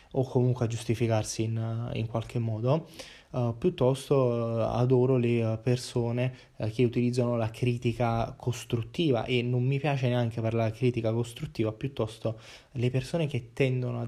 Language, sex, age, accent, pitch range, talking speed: Italian, male, 20-39, native, 115-135 Hz, 155 wpm